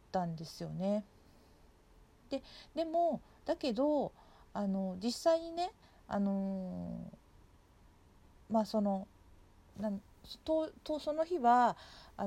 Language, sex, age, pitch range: Japanese, female, 40-59, 195-245 Hz